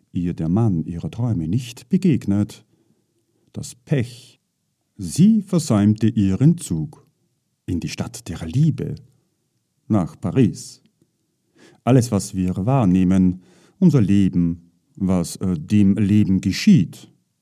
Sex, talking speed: male, 105 wpm